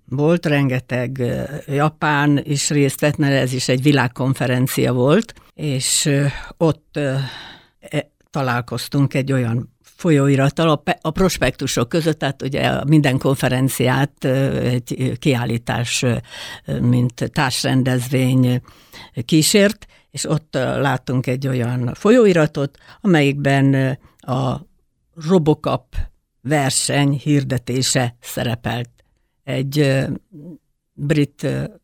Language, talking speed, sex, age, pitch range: Hungarian, 85 wpm, female, 60-79, 125-150 Hz